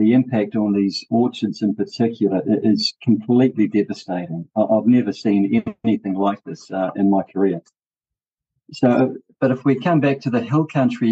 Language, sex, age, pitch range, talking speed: English, male, 50-69, 105-120 Hz, 160 wpm